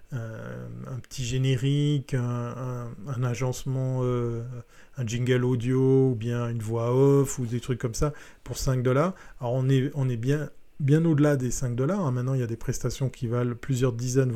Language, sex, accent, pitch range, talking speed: French, male, French, 125-150 Hz, 195 wpm